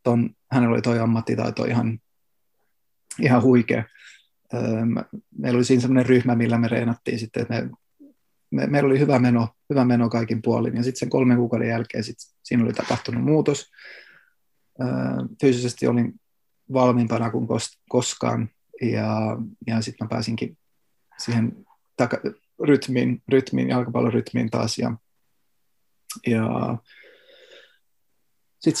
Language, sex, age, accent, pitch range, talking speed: Finnish, male, 30-49, native, 115-130 Hz, 115 wpm